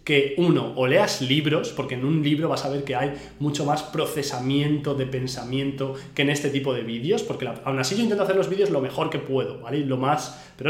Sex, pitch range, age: male, 130-150 Hz, 20-39